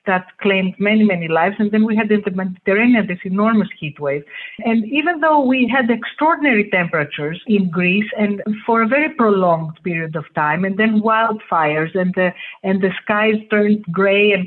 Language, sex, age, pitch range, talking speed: English, female, 50-69, 190-235 Hz, 185 wpm